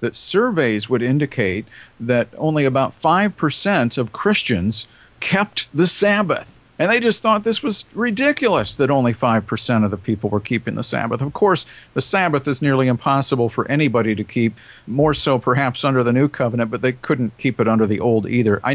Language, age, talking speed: English, 50-69, 185 wpm